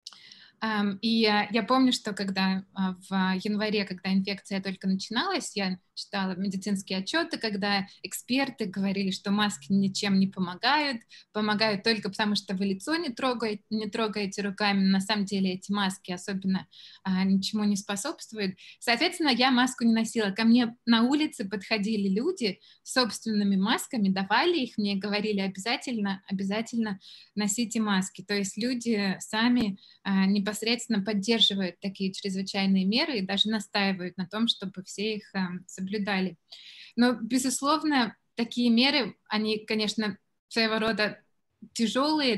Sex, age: female, 20-39